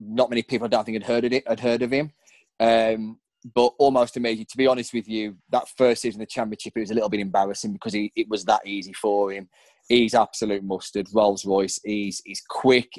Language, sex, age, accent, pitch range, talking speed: English, male, 20-39, British, 105-125 Hz, 230 wpm